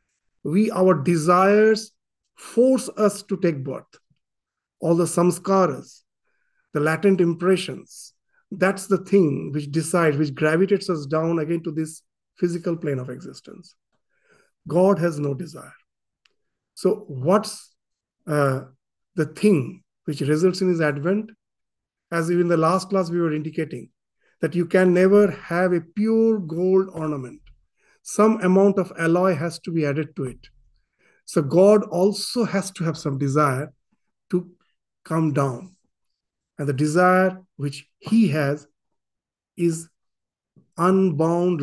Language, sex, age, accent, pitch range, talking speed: English, male, 50-69, Indian, 155-195 Hz, 130 wpm